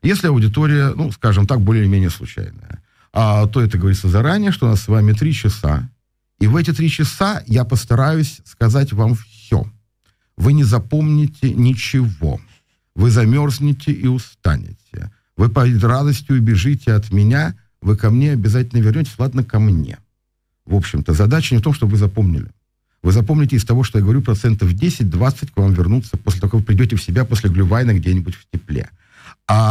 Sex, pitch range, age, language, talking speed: male, 100-125 Hz, 50-69, Russian, 170 wpm